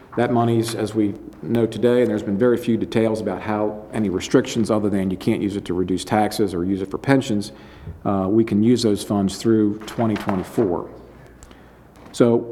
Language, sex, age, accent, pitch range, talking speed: English, male, 40-59, American, 100-115 Hz, 185 wpm